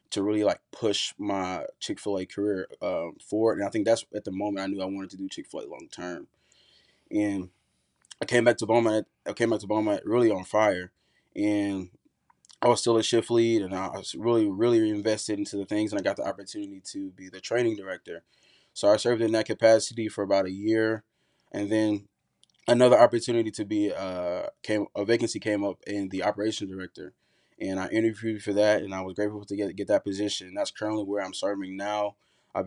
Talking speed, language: 215 wpm, English